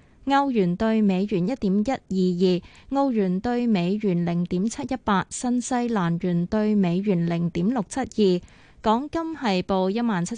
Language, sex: Chinese, female